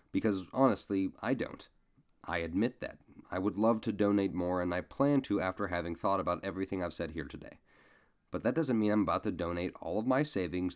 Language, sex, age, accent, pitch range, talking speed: English, male, 30-49, American, 95-130 Hz, 210 wpm